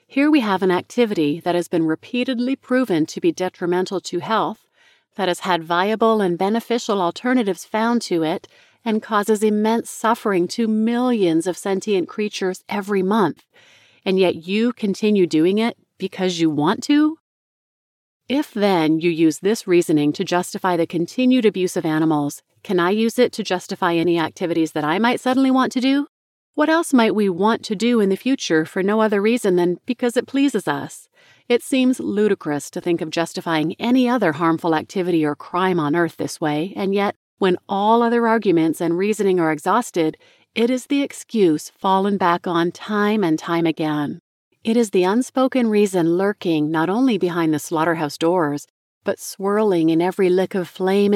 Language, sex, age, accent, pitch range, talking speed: English, female, 30-49, American, 170-230 Hz, 175 wpm